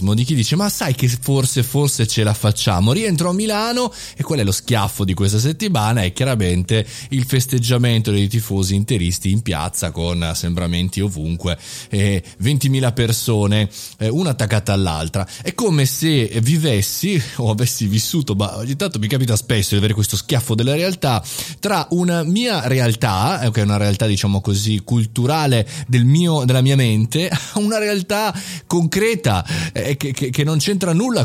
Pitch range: 100-140 Hz